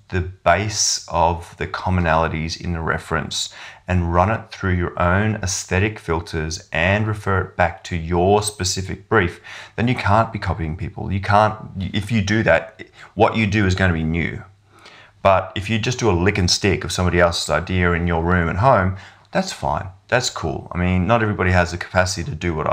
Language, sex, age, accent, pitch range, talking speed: English, male, 30-49, Australian, 85-100 Hz, 200 wpm